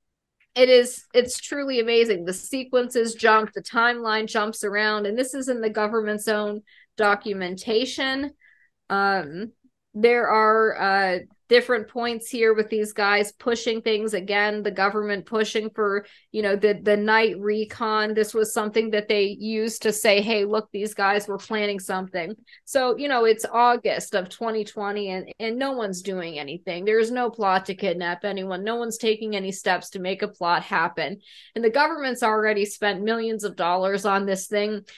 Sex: female